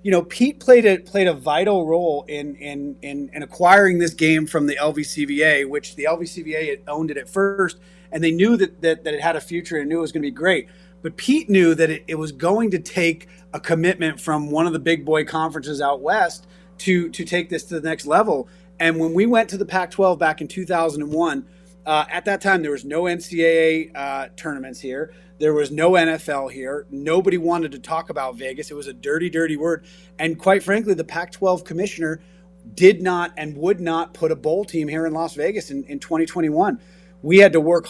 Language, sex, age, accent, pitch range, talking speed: English, male, 30-49, American, 155-180 Hz, 220 wpm